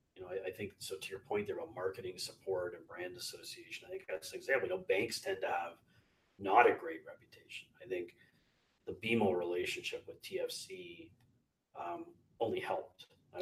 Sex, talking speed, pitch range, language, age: male, 190 wpm, 345-445 Hz, English, 30-49